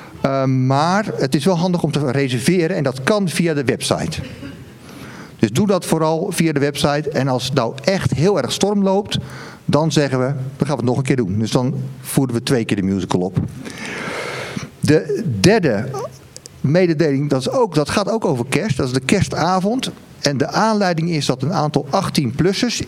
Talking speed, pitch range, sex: 185 wpm, 135-185 Hz, male